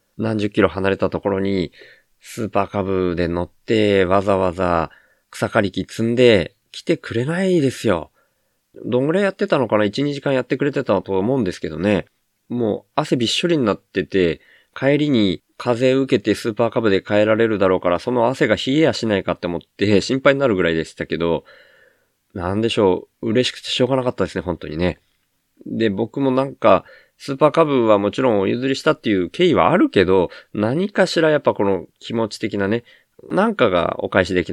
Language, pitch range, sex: Japanese, 95-135 Hz, male